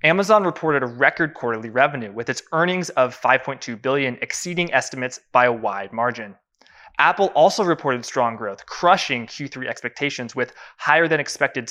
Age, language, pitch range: 20-39, English, 125-160 Hz